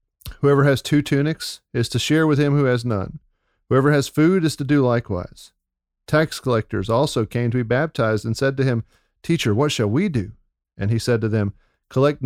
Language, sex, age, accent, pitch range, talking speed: English, male, 40-59, American, 110-145 Hz, 200 wpm